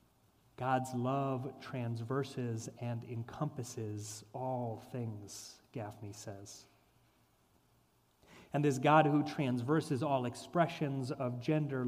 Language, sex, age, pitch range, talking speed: English, male, 30-49, 110-130 Hz, 90 wpm